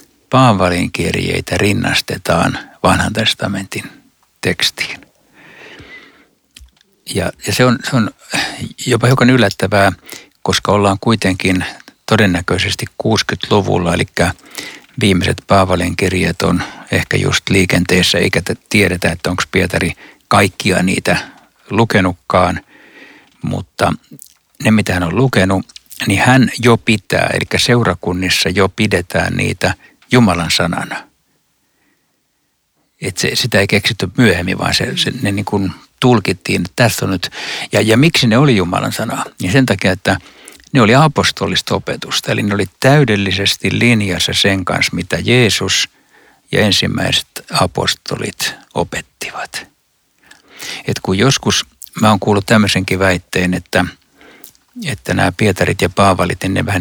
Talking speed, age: 120 wpm, 60-79